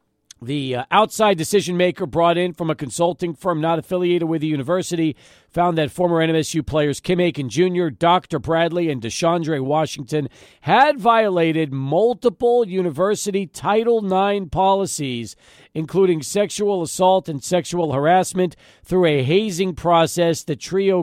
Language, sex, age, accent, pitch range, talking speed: English, male, 50-69, American, 135-185 Hz, 135 wpm